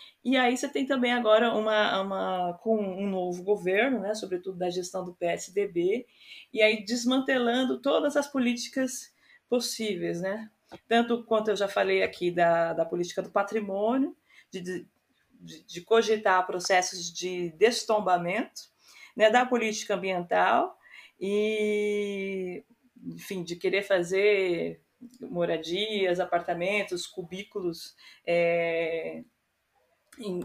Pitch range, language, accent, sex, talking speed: 185-235 Hz, Portuguese, Brazilian, female, 110 wpm